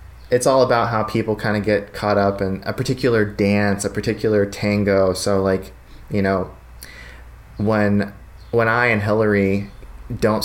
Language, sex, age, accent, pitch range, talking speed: English, male, 20-39, American, 95-110 Hz, 155 wpm